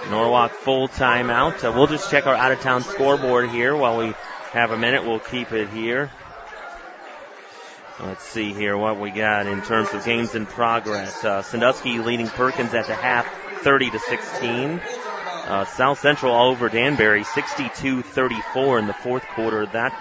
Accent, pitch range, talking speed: American, 110-125 Hz, 160 wpm